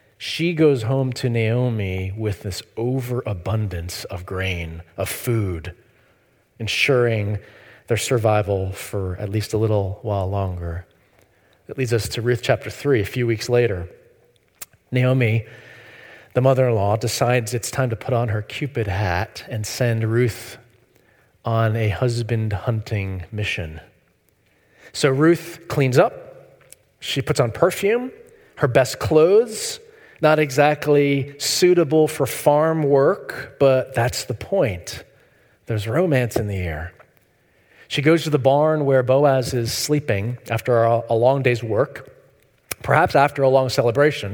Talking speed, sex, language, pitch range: 130 wpm, male, English, 105-135 Hz